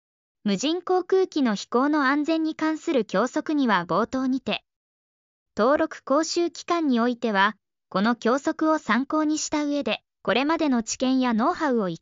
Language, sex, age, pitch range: Japanese, male, 20-39, 220-315 Hz